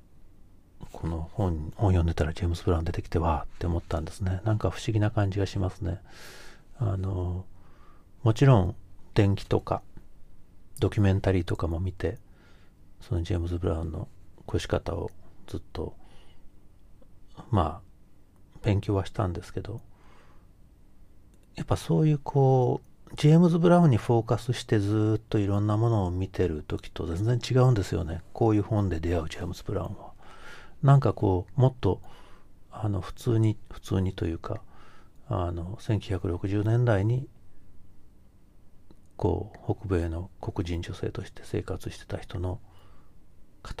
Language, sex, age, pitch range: Japanese, male, 40-59, 90-110 Hz